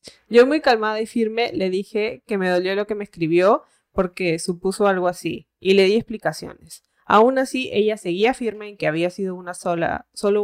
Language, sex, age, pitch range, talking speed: Spanish, female, 20-39, 180-230 Hz, 195 wpm